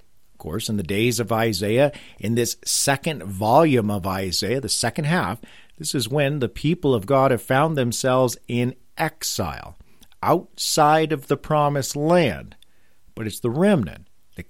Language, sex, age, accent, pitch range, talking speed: English, male, 50-69, American, 115-165 Hz, 155 wpm